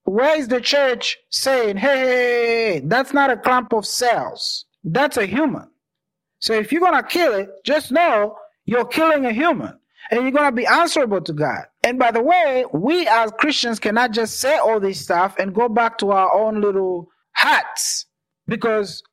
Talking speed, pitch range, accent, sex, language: 180 wpm, 185-250 Hz, Nigerian, male, English